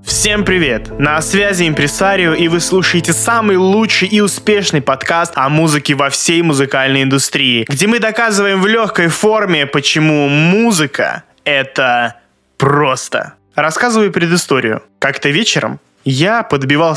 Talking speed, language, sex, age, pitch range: 125 wpm, Russian, male, 20-39, 145-200 Hz